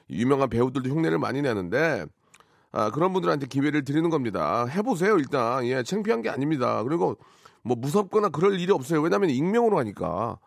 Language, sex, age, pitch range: Korean, male, 40-59, 130-185 Hz